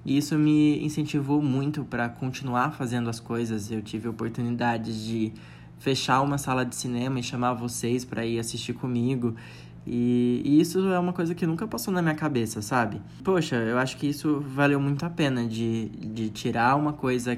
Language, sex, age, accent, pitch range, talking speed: Portuguese, male, 20-39, Brazilian, 115-145 Hz, 185 wpm